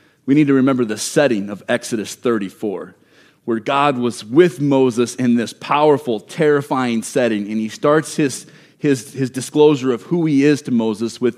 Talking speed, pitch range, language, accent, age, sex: 175 wpm, 115-150 Hz, English, American, 30-49, male